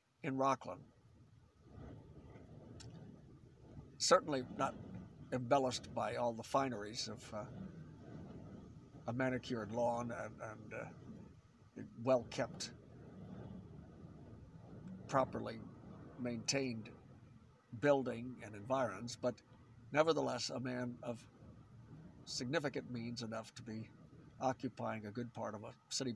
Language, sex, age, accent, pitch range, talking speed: English, male, 50-69, American, 115-135 Hz, 90 wpm